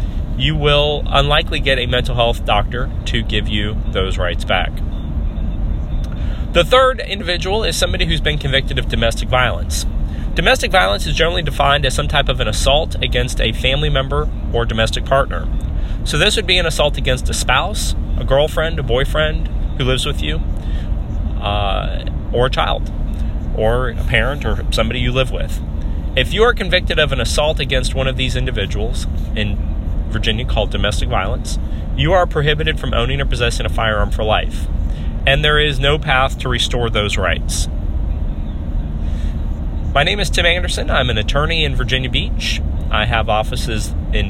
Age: 30-49